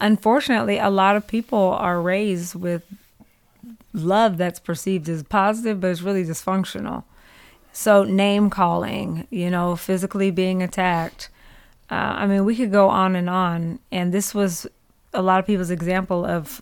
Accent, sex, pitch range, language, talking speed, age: American, female, 180-210 Hz, English, 155 wpm, 30-49